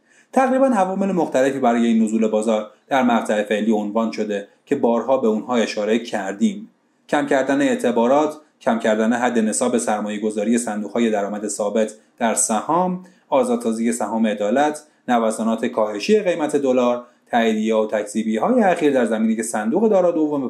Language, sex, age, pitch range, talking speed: Persian, male, 30-49, 115-180 Hz, 140 wpm